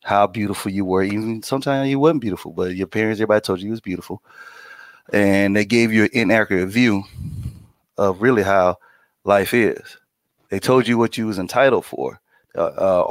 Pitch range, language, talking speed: 95-115 Hz, English, 185 wpm